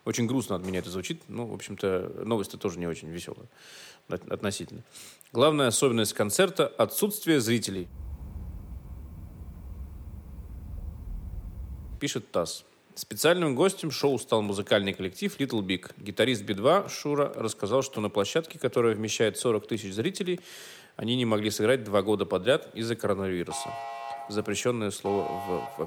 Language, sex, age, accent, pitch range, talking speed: Russian, male, 30-49, native, 95-135 Hz, 130 wpm